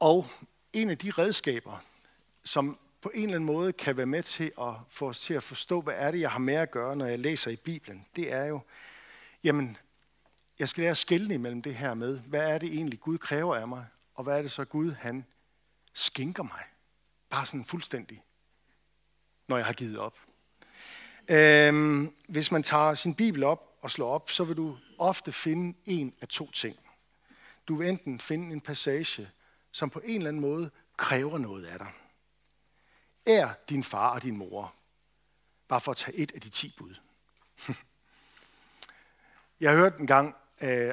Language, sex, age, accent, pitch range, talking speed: Danish, male, 60-79, native, 120-160 Hz, 185 wpm